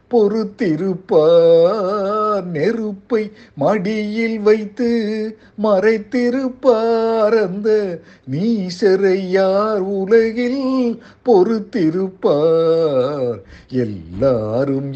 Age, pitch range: 50-69, 185-230 Hz